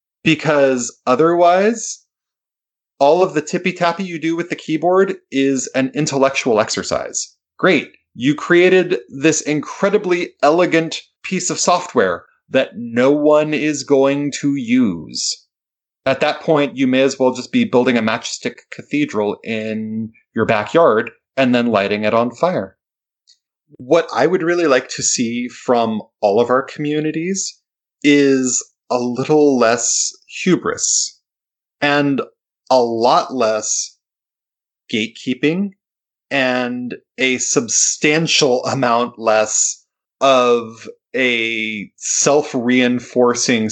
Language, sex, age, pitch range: English, male, 30-49, 120-160 Hz